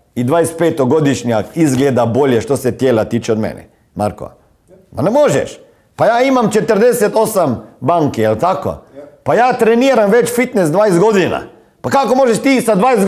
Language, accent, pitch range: Croatian, native, 150-225 Hz